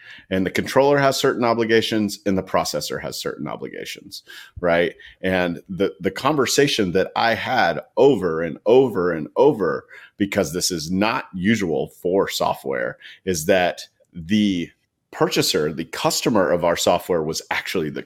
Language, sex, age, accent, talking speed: English, male, 40-59, American, 145 wpm